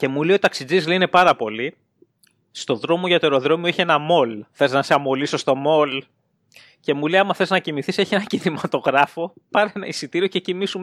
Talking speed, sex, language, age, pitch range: 205 wpm, male, Greek, 20-39, 145-195 Hz